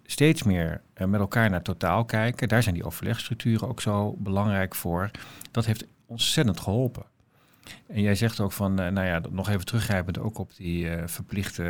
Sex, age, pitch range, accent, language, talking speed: male, 50-69, 90-115 Hz, Dutch, Dutch, 175 wpm